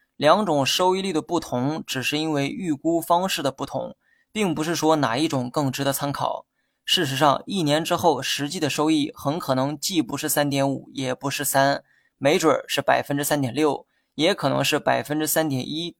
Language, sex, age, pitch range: Chinese, male, 20-39, 135-165 Hz